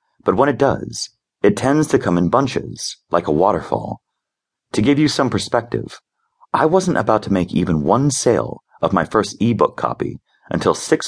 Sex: male